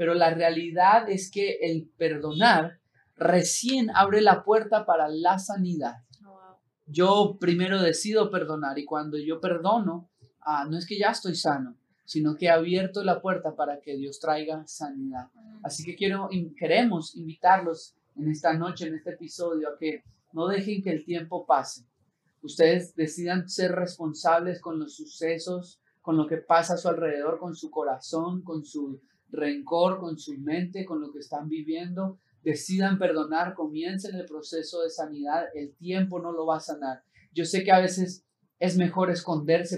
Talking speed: 165 wpm